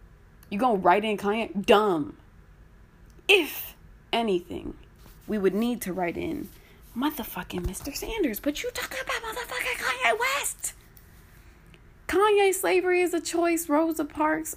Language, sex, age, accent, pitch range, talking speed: English, female, 20-39, American, 180-290 Hz, 130 wpm